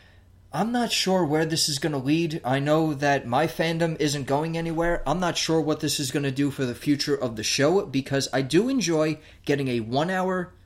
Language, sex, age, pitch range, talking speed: English, male, 30-49, 125-160 Hz, 220 wpm